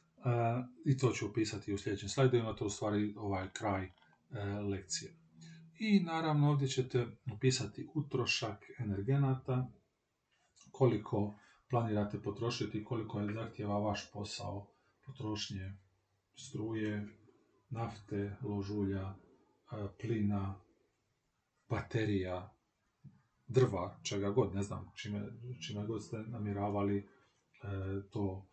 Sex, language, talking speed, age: male, Croatian, 100 wpm, 40-59